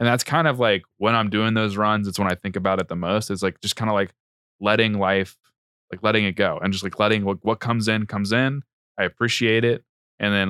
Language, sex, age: English, male, 20-39